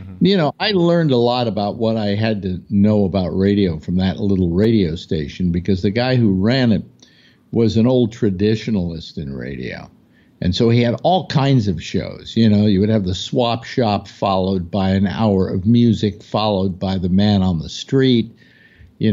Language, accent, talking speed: English, American, 190 wpm